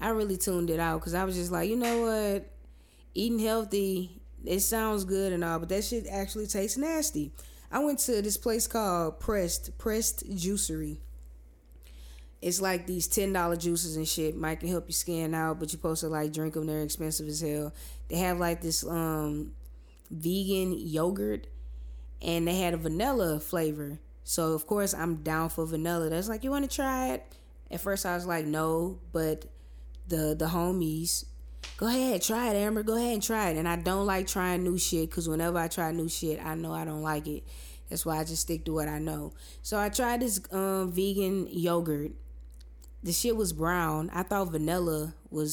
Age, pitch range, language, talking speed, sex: 20-39, 155-190 Hz, English, 195 wpm, female